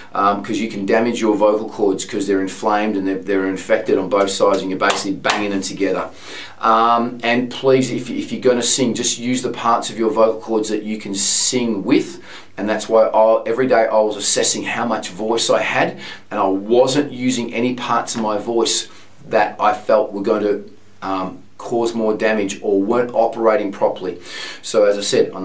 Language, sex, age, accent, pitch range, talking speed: English, male, 40-59, Australian, 95-115 Hz, 205 wpm